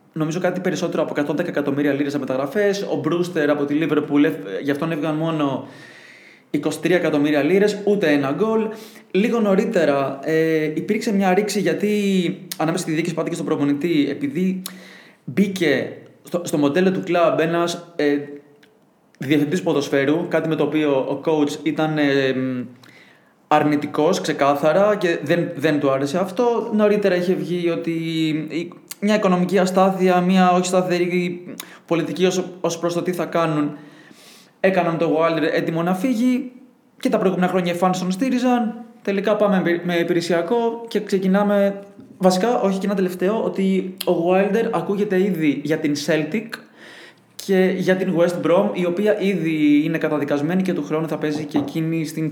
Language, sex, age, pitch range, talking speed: Greek, male, 20-39, 155-195 Hz, 145 wpm